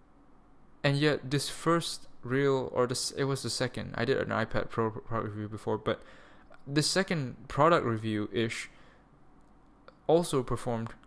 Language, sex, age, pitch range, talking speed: English, male, 10-29, 120-155 Hz, 135 wpm